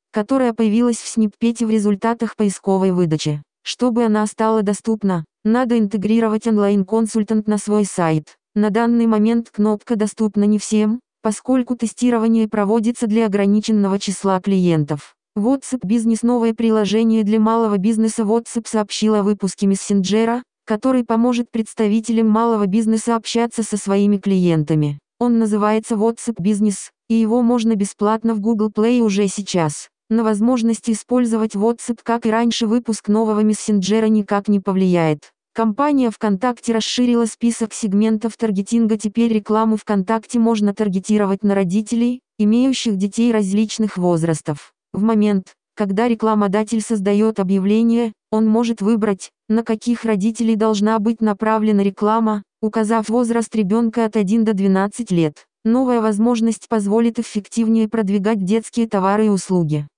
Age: 20-39